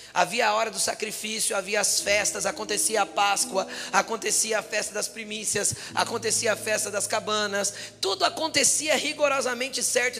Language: Portuguese